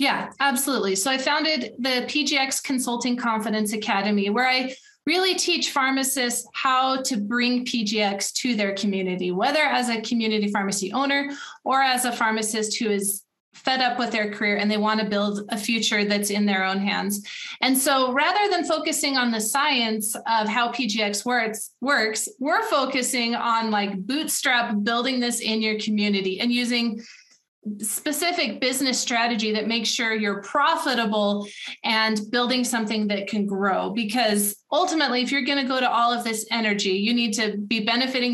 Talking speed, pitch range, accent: 165 wpm, 210-260 Hz, American